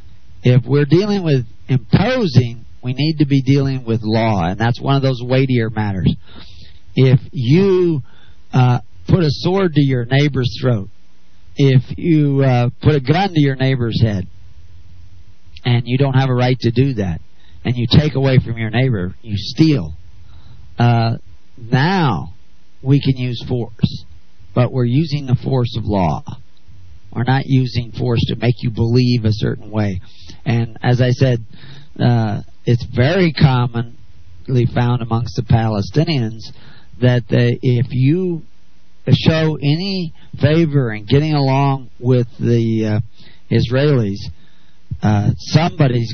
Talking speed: 140 wpm